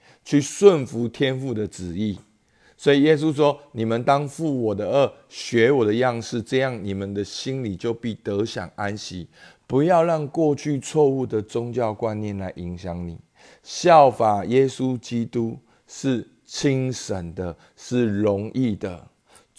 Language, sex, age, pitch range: Chinese, male, 50-69, 100-135 Hz